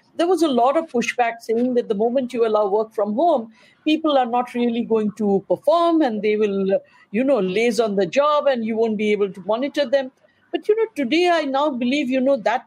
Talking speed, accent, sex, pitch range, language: 230 wpm, Indian, female, 215-280 Hz, English